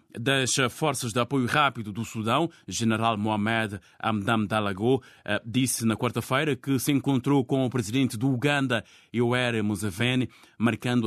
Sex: male